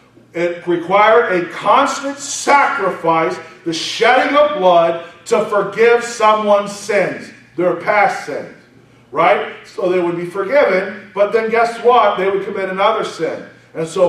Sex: male